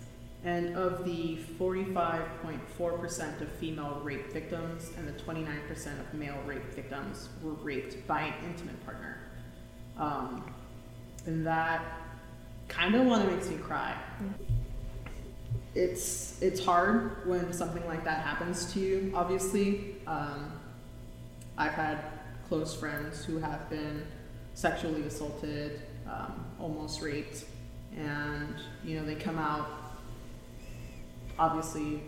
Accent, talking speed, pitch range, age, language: American, 110 wpm, 145-165 Hz, 20-39, English